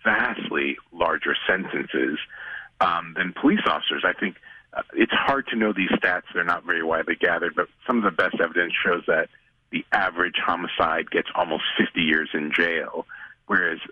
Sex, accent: male, American